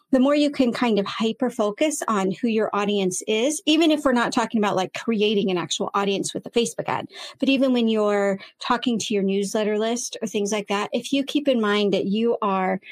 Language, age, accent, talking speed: English, 30-49, American, 225 wpm